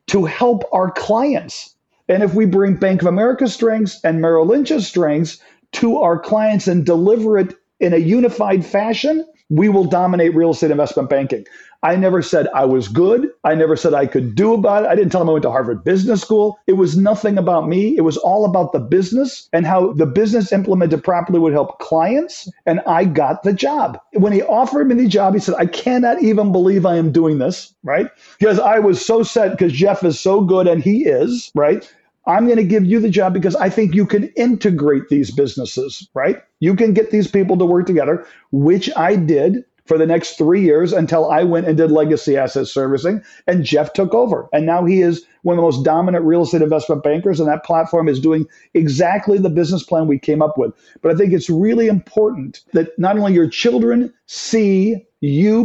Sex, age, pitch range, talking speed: male, 50-69, 165-215 Hz, 210 wpm